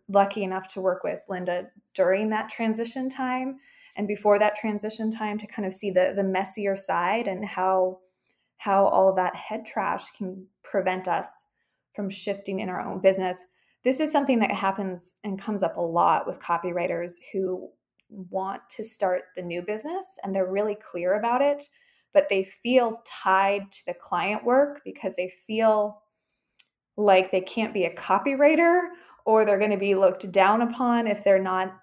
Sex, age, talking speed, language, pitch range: female, 20-39, 175 wpm, English, 190-220 Hz